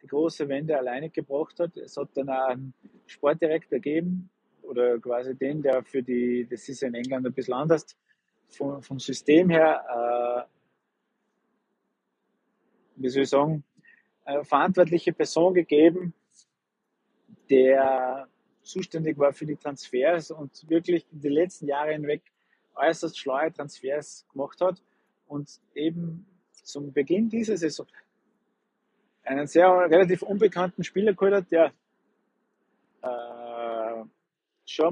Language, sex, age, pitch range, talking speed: German, male, 30-49, 135-175 Hz, 125 wpm